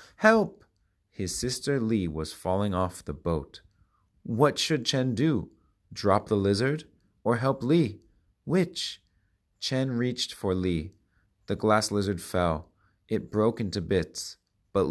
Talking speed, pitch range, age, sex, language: 135 wpm, 90-120 Hz, 30-49, male, English